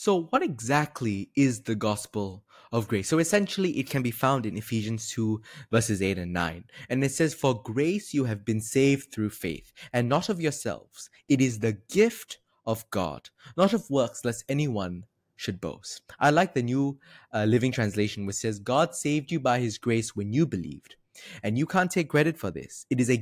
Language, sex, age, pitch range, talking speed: English, male, 20-39, 105-150 Hz, 200 wpm